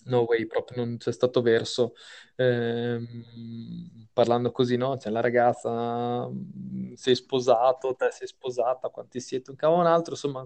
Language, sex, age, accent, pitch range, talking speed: Italian, male, 20-39, native, 120-155 Hz, 155 wpm